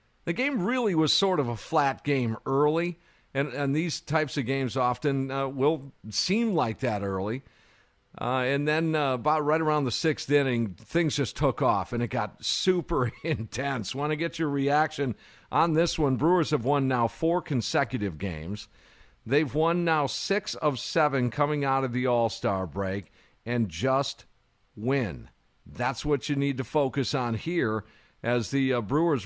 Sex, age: male, 50-69